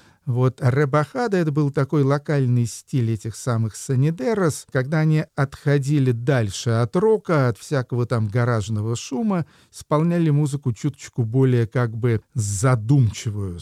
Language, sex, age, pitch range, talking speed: Russian, male, 50-69, 110-145 Hz, 125 wpm